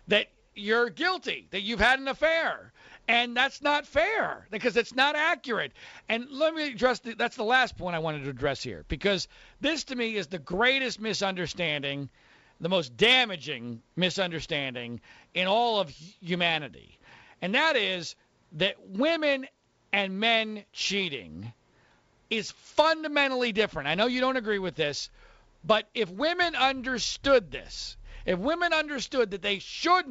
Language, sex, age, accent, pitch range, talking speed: English, male, 40-59, American, 180-260 Hz, 150 wpm